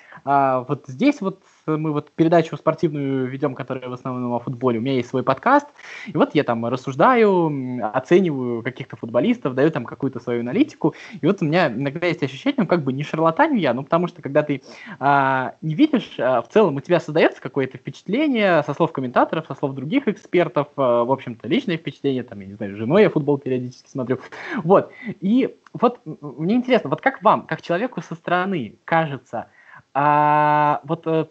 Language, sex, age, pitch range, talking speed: Russian, male, 20-39, 130-170 Hz, 190 wpm